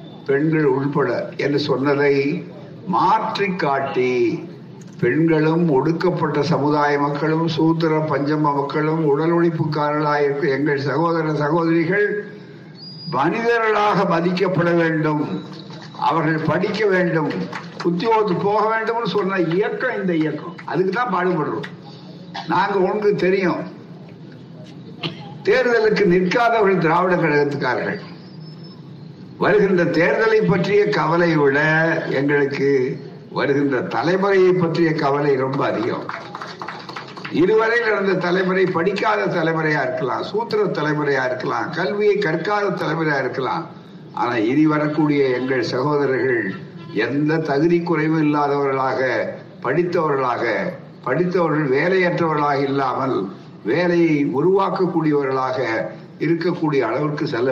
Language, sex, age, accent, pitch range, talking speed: Tamil, male, 60-79, native, 150-180 Hz, 85 wpm